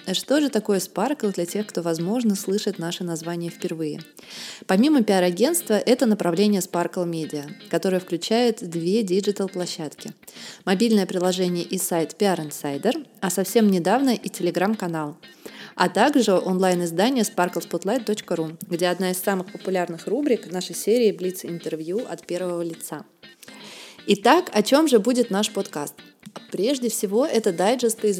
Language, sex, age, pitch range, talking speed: Russian, female, 20-39, 175-220 Hz, 130 wpm